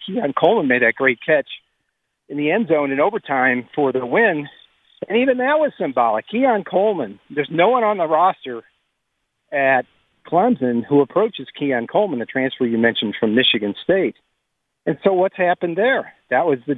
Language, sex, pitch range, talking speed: English, male, 125-175 Hz, 175 wpm